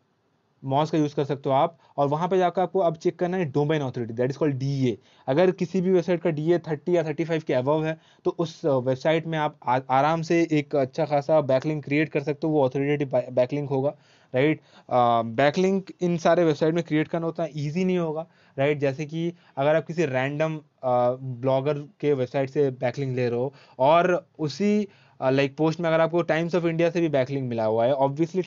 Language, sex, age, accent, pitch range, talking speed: Hindi, male, 20-39, native, 135-165 Hz, 200 wpm